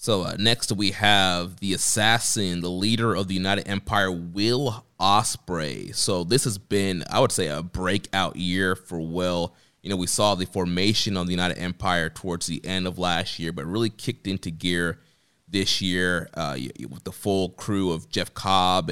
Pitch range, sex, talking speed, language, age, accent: 90-105 Hz, male, 185 wpm, English, 20-39, American